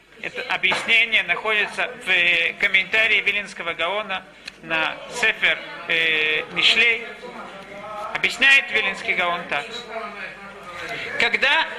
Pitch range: 200-255 Hz